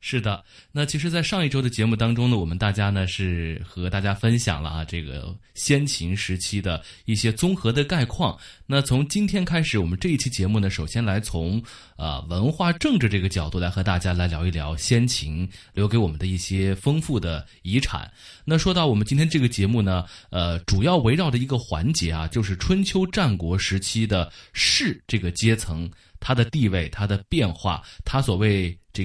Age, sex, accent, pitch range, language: 20-39, male, native, 95-130 Hz, Chinese